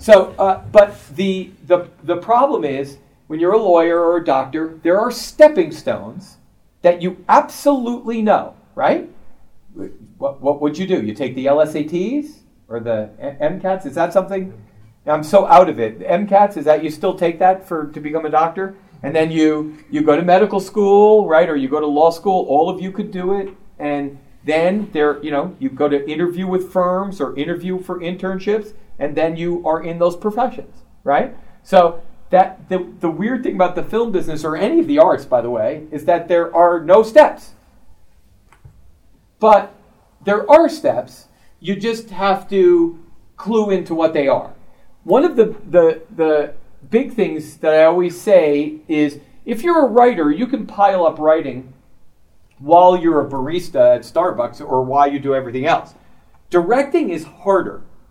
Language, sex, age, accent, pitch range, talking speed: English, male, 40-59, American, 155-200 Hz, 180 wpm